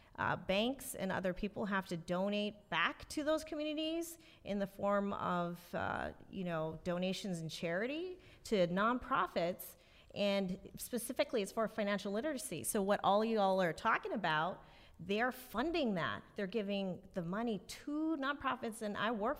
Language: English